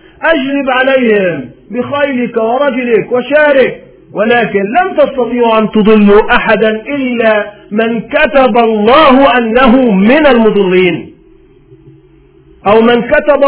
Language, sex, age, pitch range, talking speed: Arabic, male, 50-69, 210-280 Hz, 95 wpm